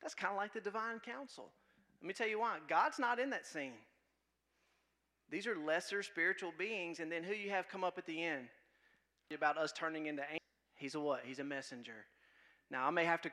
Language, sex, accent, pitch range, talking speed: English, male, American, 160-220 Hz, 215 wpm